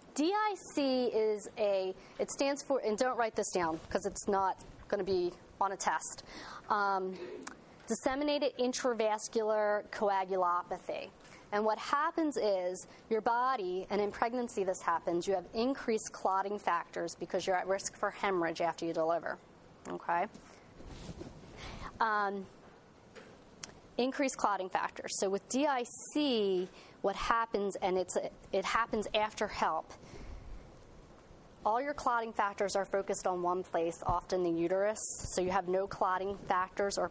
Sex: female